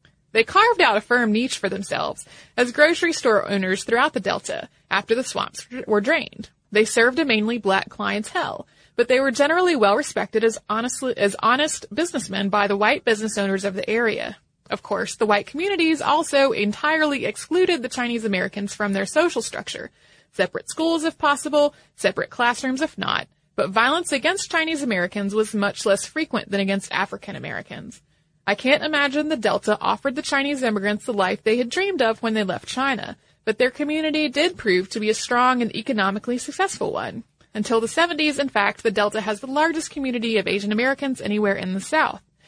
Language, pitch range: English, 205-300 Hz